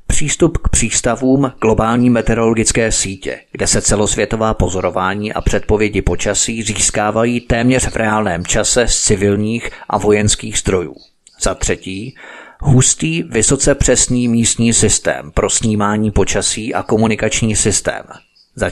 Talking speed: 120 wpm